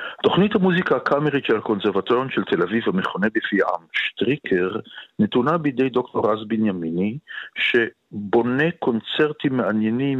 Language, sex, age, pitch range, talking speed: Hebrew, male, 50-69, 110-145 Hz, 120 wpm